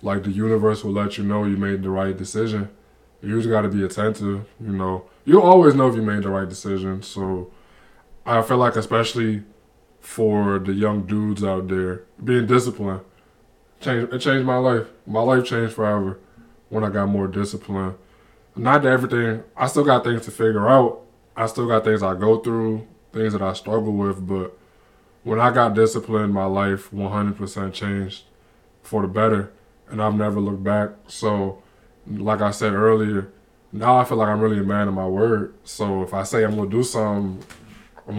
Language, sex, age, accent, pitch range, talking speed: English, male, 20-39, American, 100-115 Hz, 185 wpm